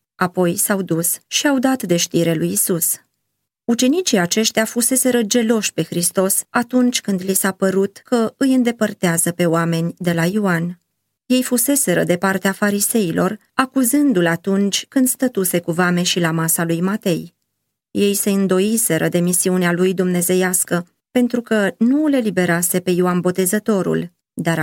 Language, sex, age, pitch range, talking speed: Romanian, female, 30-49, 175-220 Hz, 150 wpm